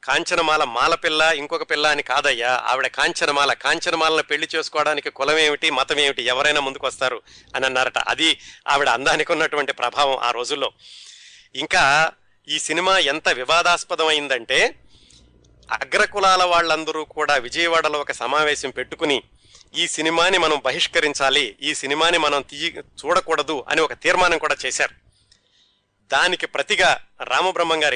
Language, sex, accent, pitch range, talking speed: Telugu, male, native, 135-170 Hz, 120 wpm